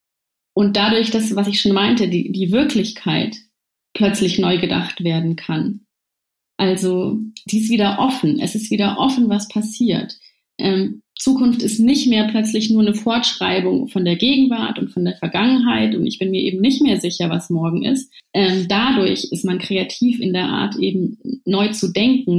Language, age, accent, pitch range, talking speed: German, 30-49, German, 195-225 Hz, 175 wpm